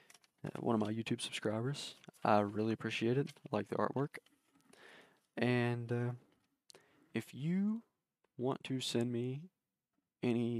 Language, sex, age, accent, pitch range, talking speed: English, male, 20-39, American, 110-125 Hz, 130 wpm